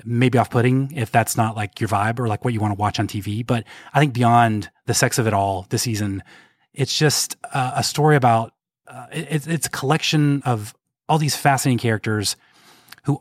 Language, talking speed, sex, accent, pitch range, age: English, 205 wpm, male, American, 110-135 Hz, 30-49